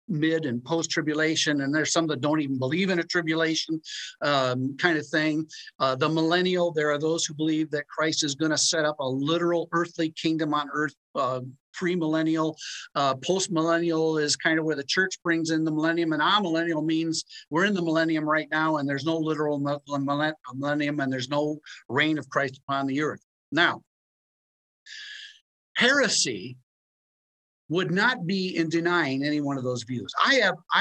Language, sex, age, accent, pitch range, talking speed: English, male, 50-69, American, 150-185 Hz, 170 wpm